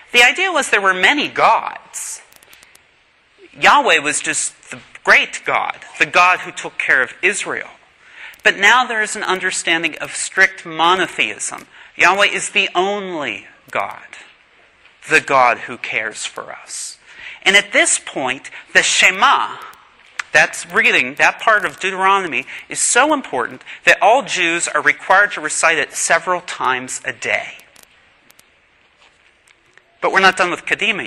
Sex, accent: male, American